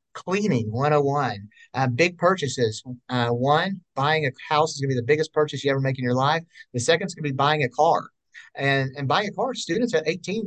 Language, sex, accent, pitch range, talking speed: English, male, American, 130-160 Hz, 230 wpm